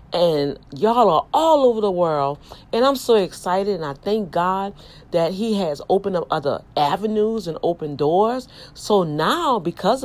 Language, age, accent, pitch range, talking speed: English, 40-59, American, 160-220 Hz, 165 wpm